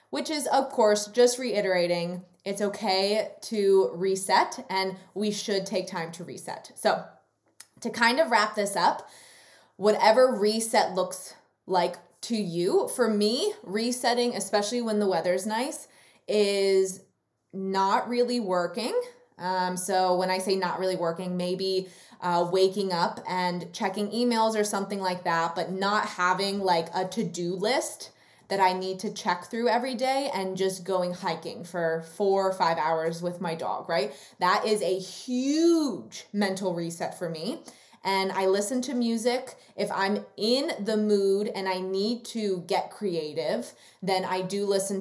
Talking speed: 155 wpm